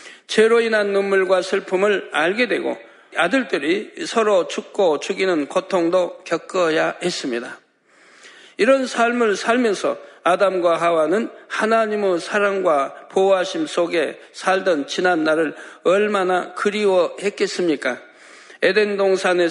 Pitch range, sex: 170-220 Hz, male